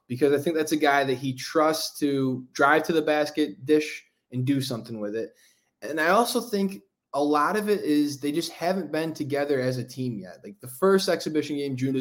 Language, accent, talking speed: English, American, 220 wpm